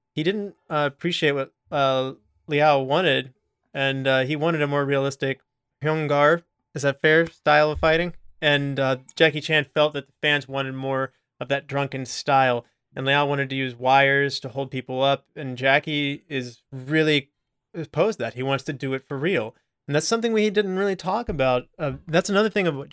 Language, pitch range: English, 130-155 Hz